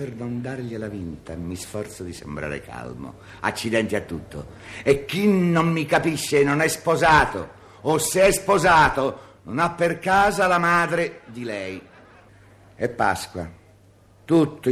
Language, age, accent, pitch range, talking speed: Italian, 50-69, native, 95-125 Hz, 145 wpm